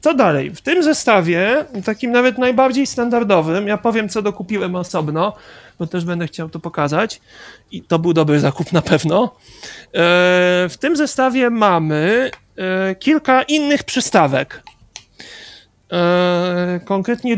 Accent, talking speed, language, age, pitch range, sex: native, 120 wpm, Polish, 40-59, 175-235 Hz, male